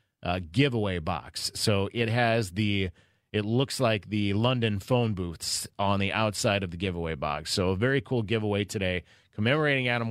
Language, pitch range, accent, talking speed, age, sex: English, 95-130 Hz, American, 170 wpm, 30-49, male